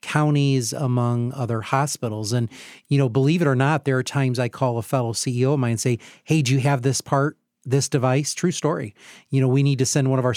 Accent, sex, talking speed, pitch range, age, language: American, male, 245 wpm, 120-140 Hz, 40-59, English